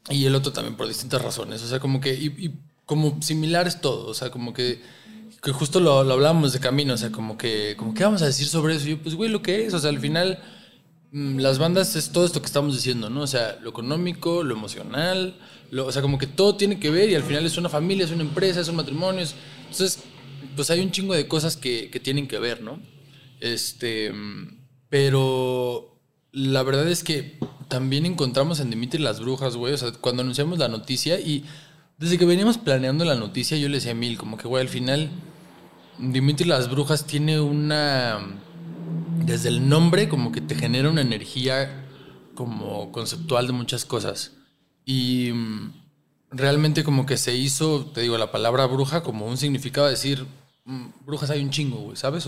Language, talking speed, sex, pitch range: Spanish, 200 wpm, male, 125-160 Hz